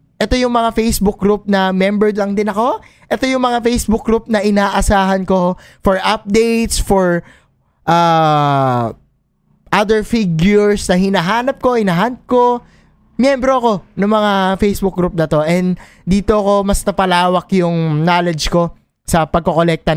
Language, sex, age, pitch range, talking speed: Filipino, male, 20-39, 165-210 Hz, 140 wpm